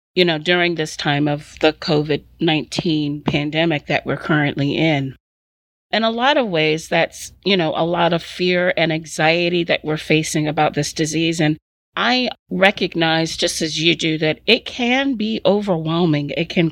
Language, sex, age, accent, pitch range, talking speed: English, female, 40-59, American, 155-180 Hz, 170 wpm